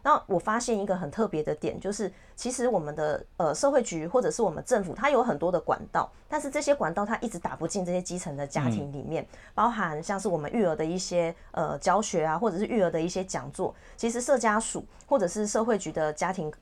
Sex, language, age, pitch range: female, Chinese, 20-39, 160-215 Hz